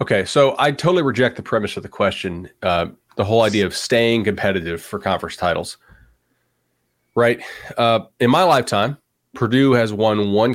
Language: English